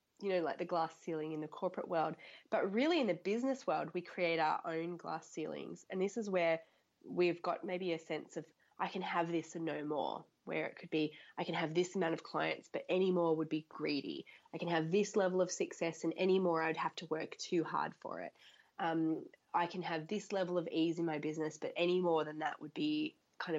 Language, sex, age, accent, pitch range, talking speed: English, female, 20-39, Australian, 160-195 Hz, 235 wpm